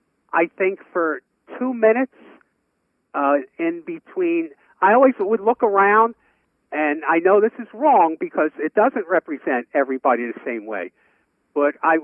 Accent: American